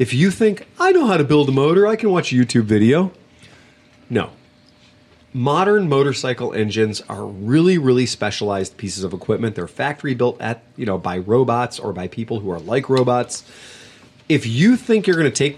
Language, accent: English, American